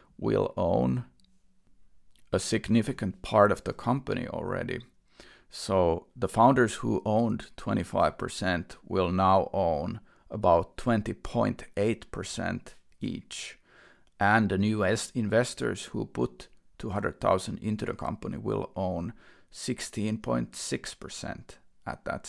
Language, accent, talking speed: English, Finnish, 95 wpm